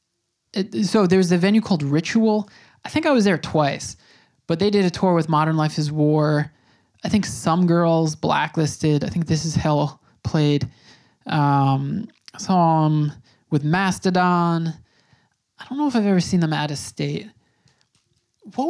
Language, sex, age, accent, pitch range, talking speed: English, male, 20-39, American, 150-200 Hz, 165 wpm